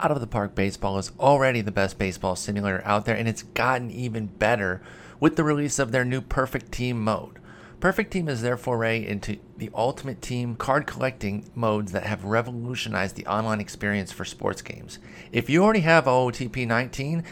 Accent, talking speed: American, 185 wpm